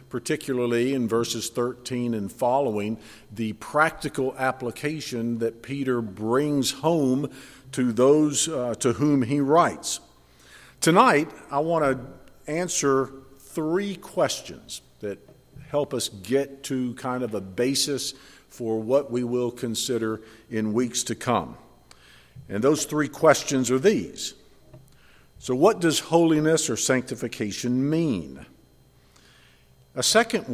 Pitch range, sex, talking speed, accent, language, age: 110-145 Hz, male, 120 wpm, American, English, 50-69